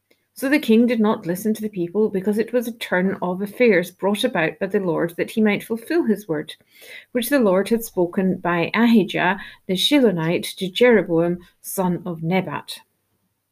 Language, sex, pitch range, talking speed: English, female, 175-215 Hz, 180 wpm